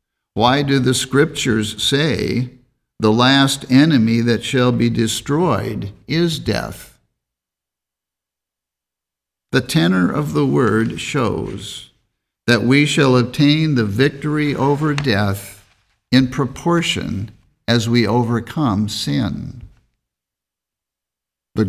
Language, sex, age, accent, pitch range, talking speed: English, male, 50-69, American, 105-140 Hz, 95 wpm